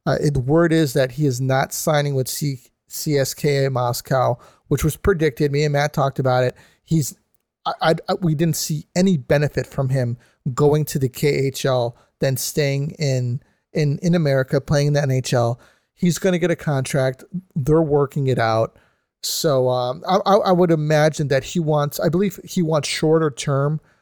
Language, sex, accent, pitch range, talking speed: English, male, American, 130-155 Hz, 180 wpm